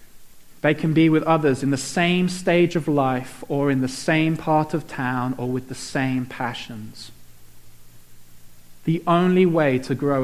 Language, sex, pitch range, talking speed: English, male, 130-165 Hz, 165 wpm